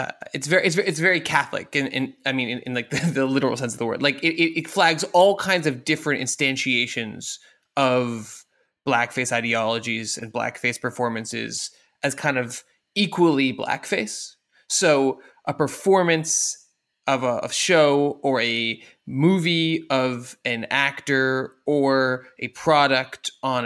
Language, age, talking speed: English, 20-39, 150 wpm